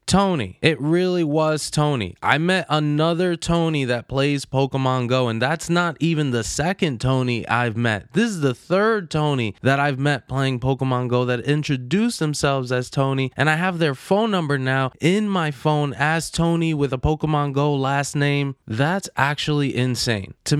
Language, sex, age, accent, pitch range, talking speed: English, male, 20-39, American, 105-145 Hz, 175 wpm